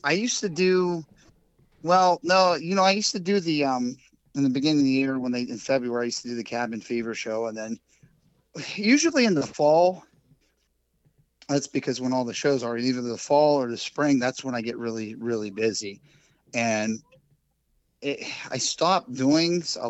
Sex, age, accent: male, 30-49, American